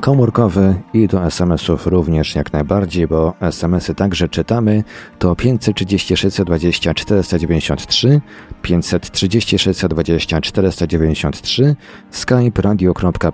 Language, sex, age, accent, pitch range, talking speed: Polish, male, 40-59, native, 80-100 Hz, 55 wpm